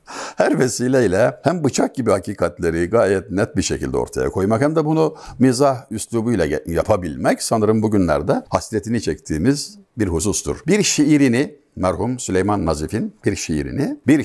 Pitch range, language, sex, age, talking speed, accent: 105-140 Hz, Turkish, male, 60-79, 135 wpm, native